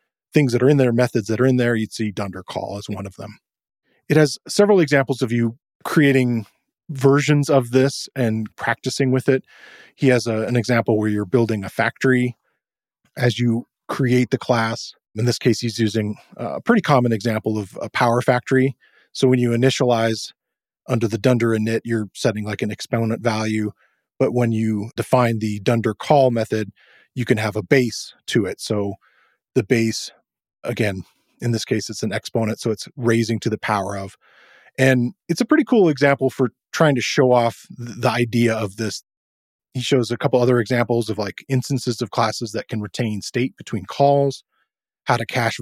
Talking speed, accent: 185 wpm, American